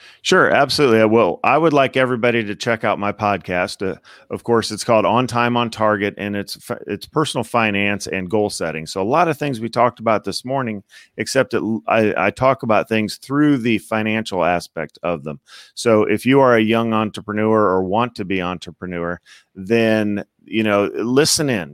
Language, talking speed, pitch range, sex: English, 190 wpm, 95-115 Hz, male